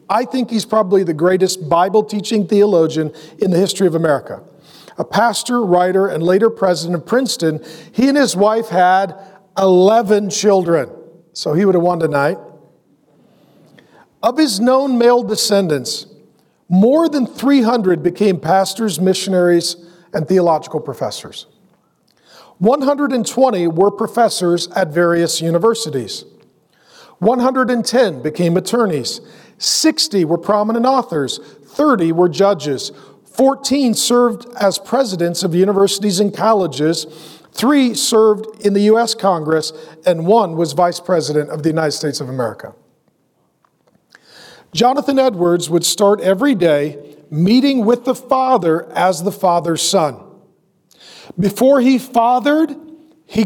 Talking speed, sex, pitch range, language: 120 wpm, male, 170-235 Hz, English